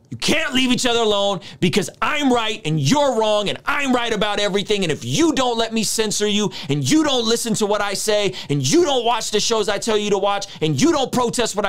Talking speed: 250 wpm